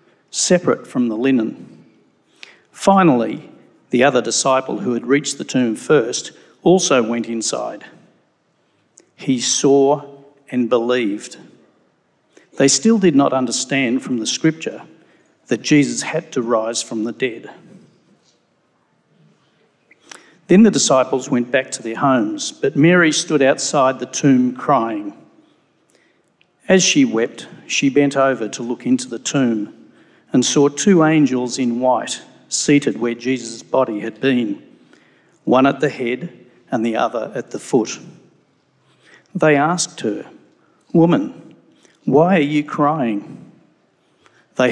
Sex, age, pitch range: male, 50-69, 125-155 Hz